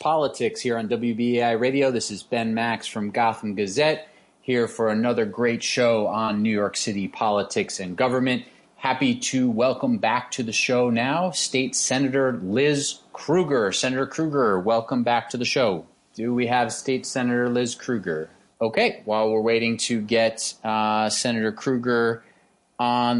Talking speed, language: 155 wpm, English